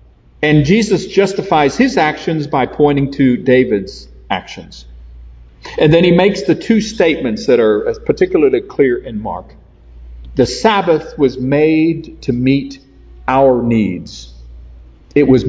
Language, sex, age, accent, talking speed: English, male, 50-69, American, 130 wpm